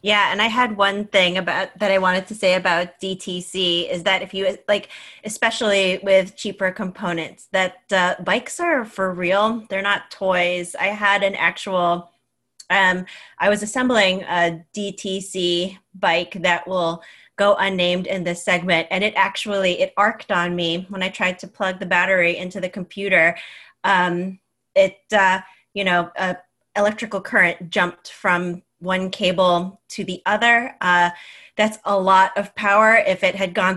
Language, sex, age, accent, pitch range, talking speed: English, female, 30-49, American, 175-200 Hz, 165 wpm